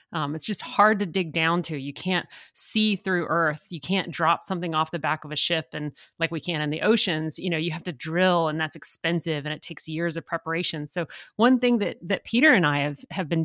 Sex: female